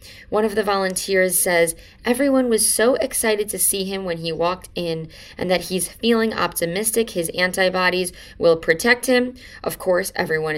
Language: English